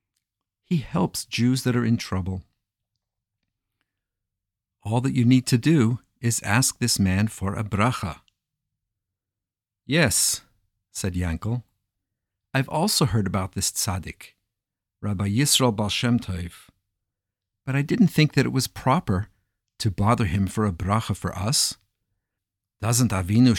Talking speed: 125 wpm